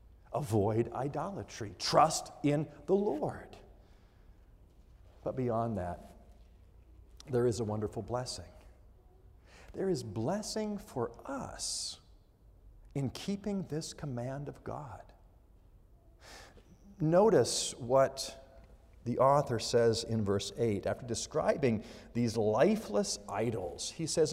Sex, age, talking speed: male, 50-69, 100 wpm